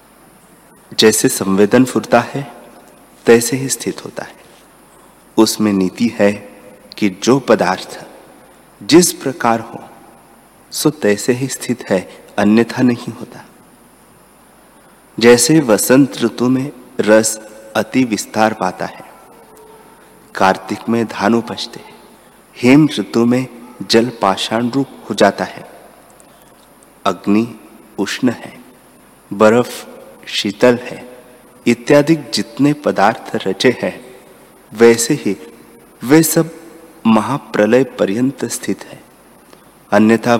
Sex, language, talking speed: male, Hindi, 100 wpm